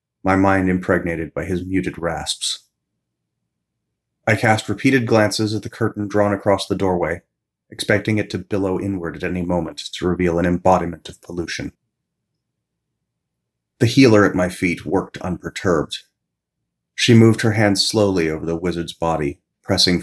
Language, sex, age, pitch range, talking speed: English, male, 30-49, 85-105 Hz, 145 wpm